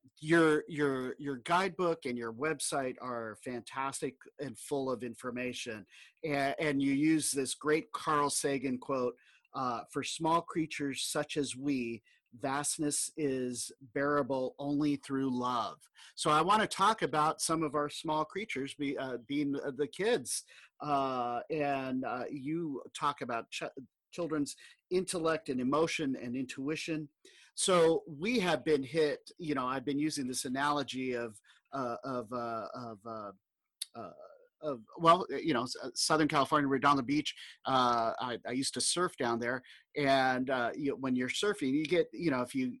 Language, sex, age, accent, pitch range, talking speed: English, male, 40-59, American, 130-160 Hz, 160 wpm